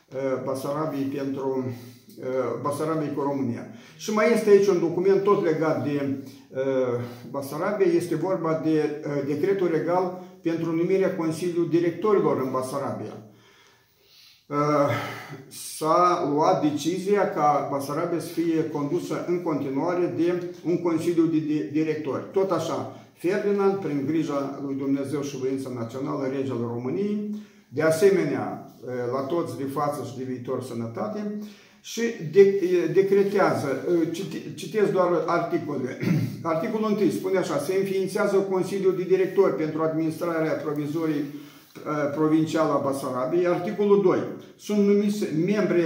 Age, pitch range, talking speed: 50-69, 140-180 Hz, 115 wpm